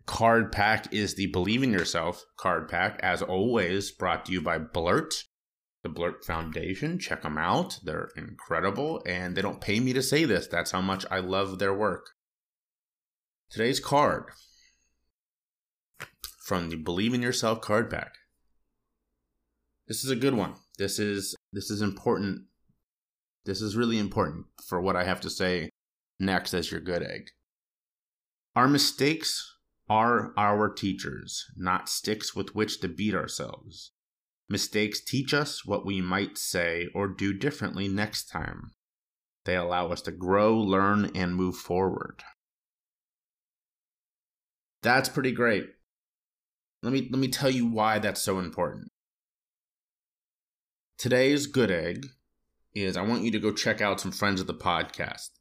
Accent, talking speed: American, 145 wpm